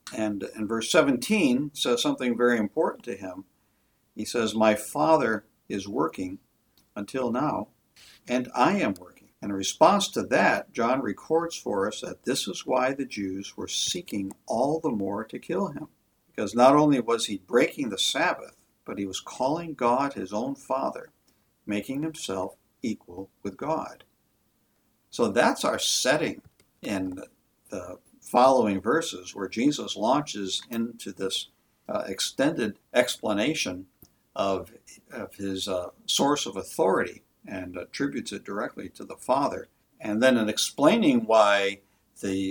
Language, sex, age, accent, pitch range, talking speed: English, male, 60-79, American, 100-135 Hz, 145 wpm